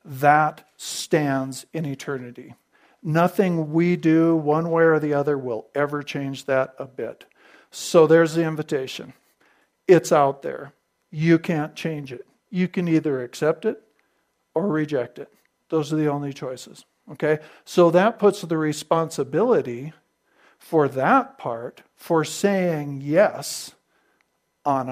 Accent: American